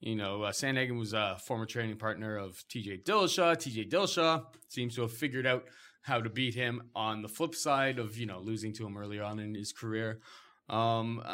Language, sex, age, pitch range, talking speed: English, male, 20-39, 105-135 Hz, 205 wpm